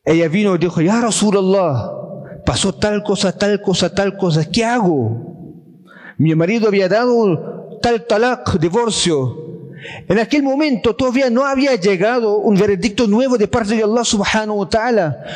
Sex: male